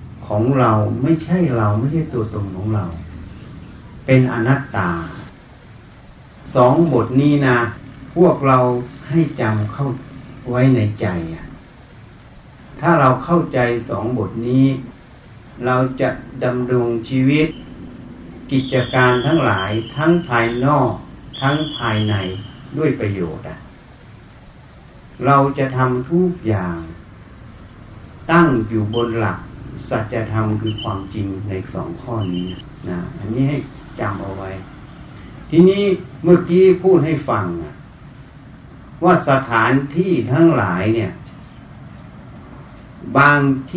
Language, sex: Thai, male